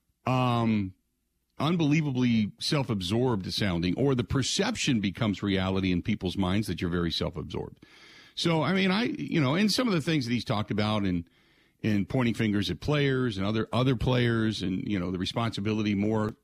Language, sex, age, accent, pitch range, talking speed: English, male, 50-69, American, 100-145 Hz, 170 wpm